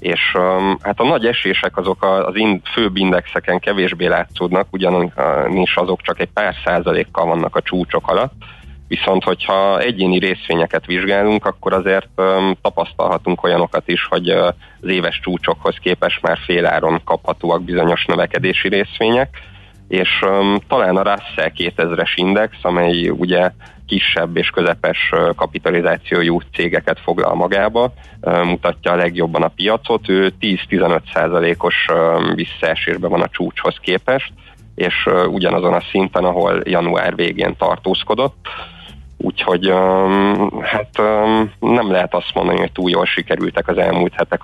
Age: 30-49